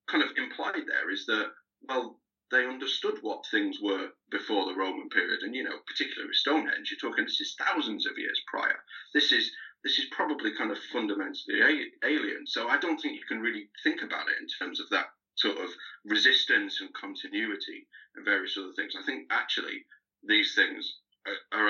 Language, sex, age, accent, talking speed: English, male, 30-49, British, 185 wpm